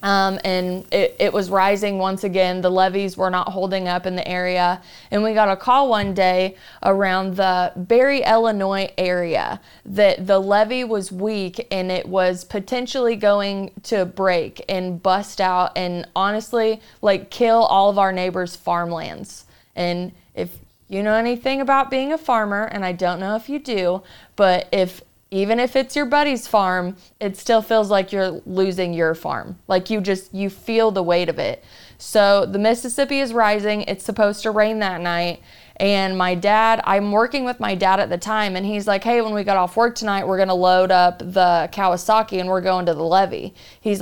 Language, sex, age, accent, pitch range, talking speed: English, female, 20-39, American, 185-215 Hz, 190 wpm